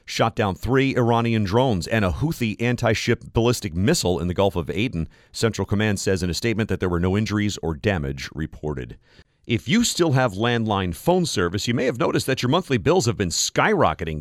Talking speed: 205 wpm